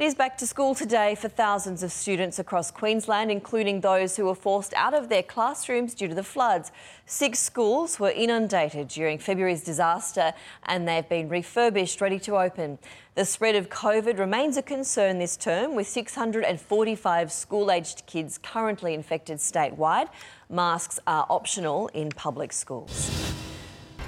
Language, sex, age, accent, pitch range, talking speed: English, female, 30-49, Australian, 165-215 Hz, 150 wpm